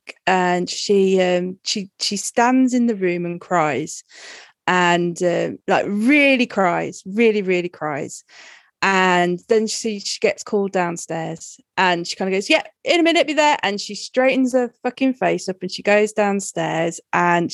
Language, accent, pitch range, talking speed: English, British, 185-225 Hz, 170 wpm